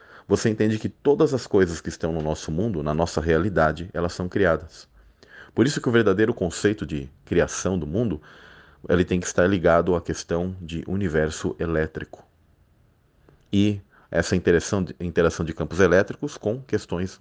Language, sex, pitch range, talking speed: Portuguese, male, 80-105 Hz, 160 wpm